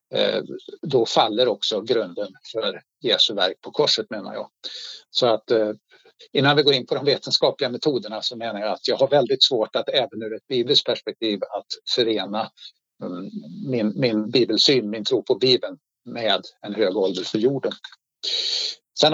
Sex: male